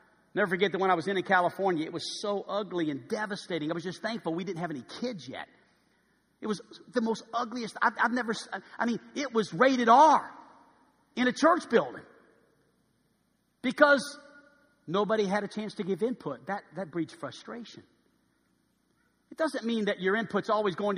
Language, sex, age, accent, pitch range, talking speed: English, male, 50-69, American, 190-265 Hz, 180 wpm